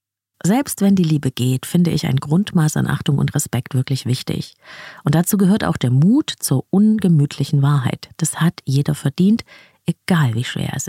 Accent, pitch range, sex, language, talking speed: German, 135-180 Hz, female, German, 175 wpm